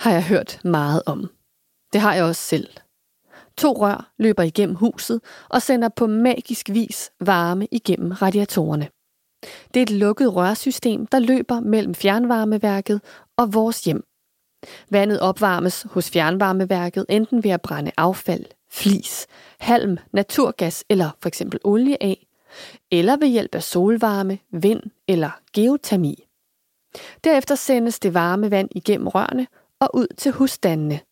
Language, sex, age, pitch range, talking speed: Danish, female, 30-49, 190-235 Hz, 135 wpm